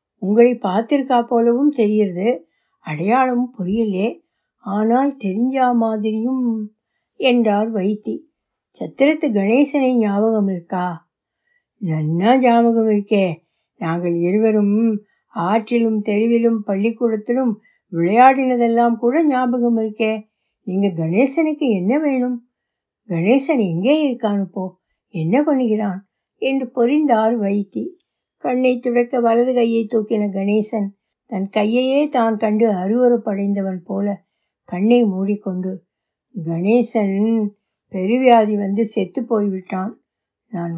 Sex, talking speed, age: female, 85 wpm, 60-79